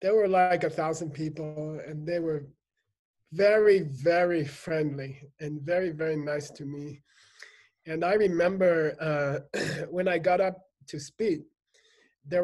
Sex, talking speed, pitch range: male, 140 wpm, 150-190 Hz